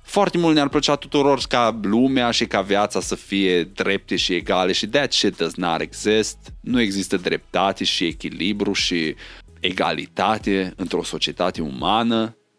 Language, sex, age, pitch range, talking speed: Romanian, male, 20-39, 95-135 Hz, 150 wpm